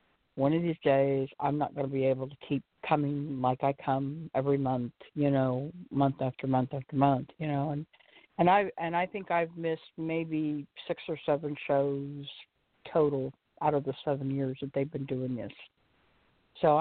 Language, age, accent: English, 50-69, American